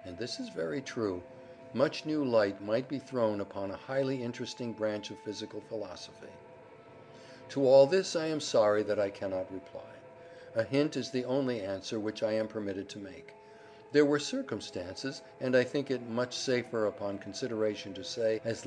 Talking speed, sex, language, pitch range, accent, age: 175 wpm, male, English, 105-135 Hz, American, 50-69